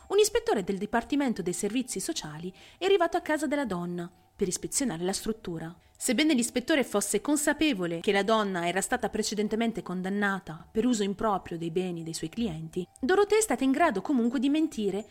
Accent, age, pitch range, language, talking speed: native, 30-49, 175-265 Hz, Italian, 175 wpm